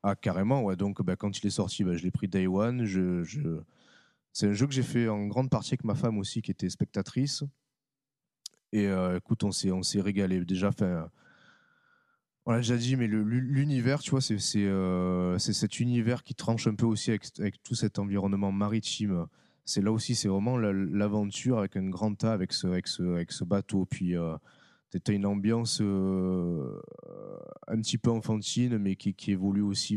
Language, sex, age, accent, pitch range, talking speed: French, male, 20-39, French, 95-115 Hz, 200 wpm